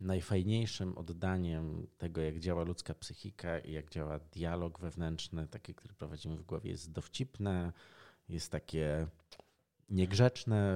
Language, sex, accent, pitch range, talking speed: Polish, male, native, 85-110 Hz, 125 wpm